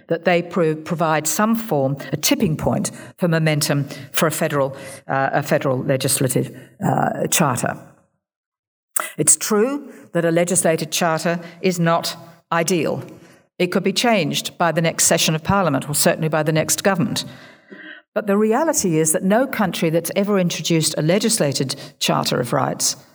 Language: English